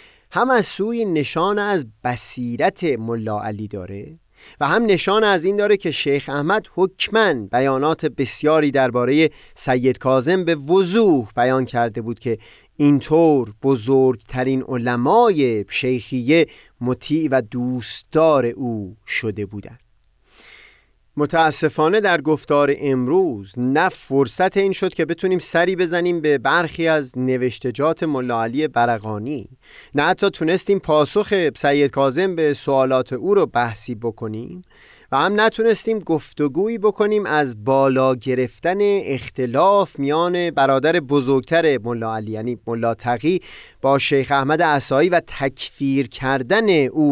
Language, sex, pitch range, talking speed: Persian, male, 125-170 Hz, 120 wpm